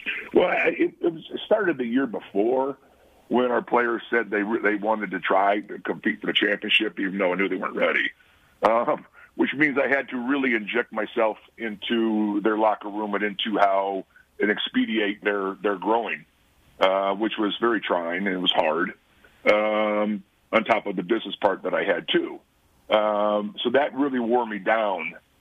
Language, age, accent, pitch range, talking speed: English, 50-69, American, 100-120 Hz, 180 wpm